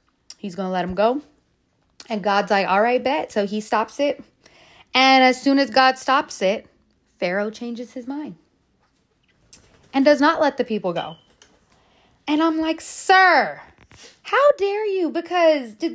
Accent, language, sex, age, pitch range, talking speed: American, English, female, 30-49, 220-295 Hz, 160 wpm